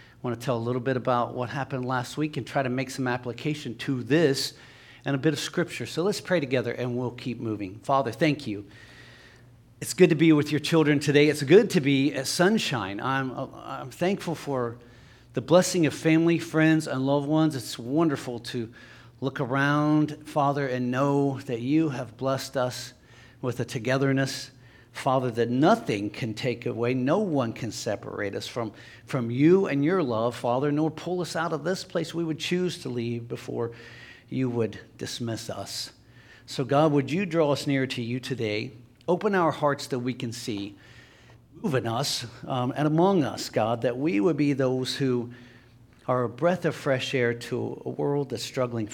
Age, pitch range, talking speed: 50-69, 120-150 Hz, 190 wpm